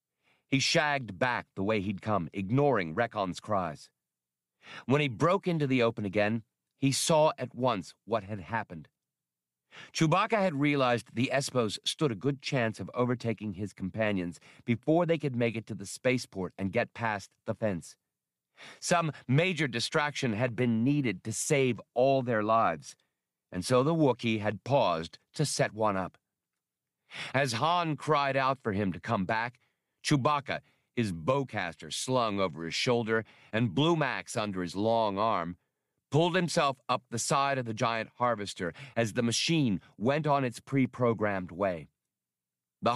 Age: 50-69